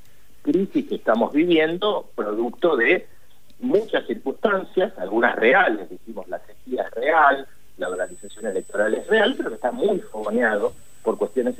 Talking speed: 135 wpm